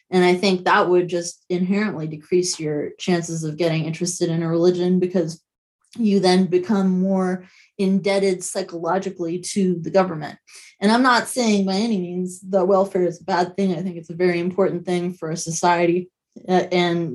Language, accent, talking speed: English, American, 175 wpm